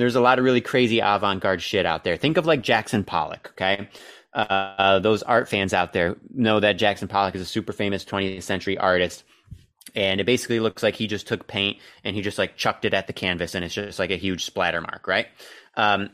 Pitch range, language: 95-115 Hz, English